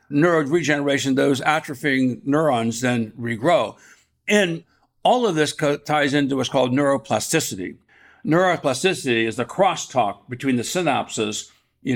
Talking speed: 120 wpm